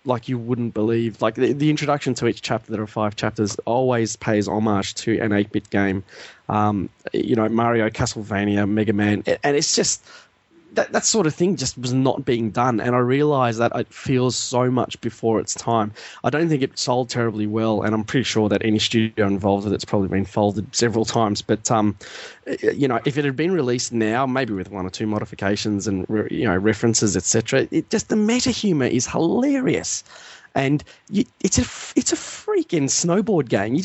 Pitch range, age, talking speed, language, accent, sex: 105-130 Hz, 20-39, 200 wpm, English, Australian, male